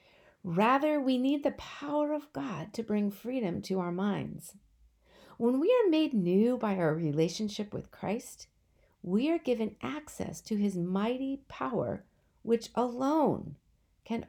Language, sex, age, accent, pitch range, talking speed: English, female, 50-69, American, 185-260 Hz, 145 wpm